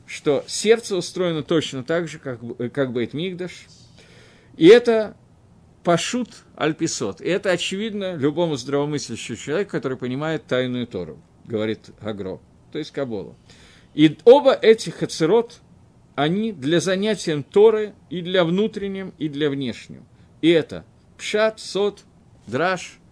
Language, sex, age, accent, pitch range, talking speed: Russian, male, 50-69, native, 130-195 Hz, 125 wpm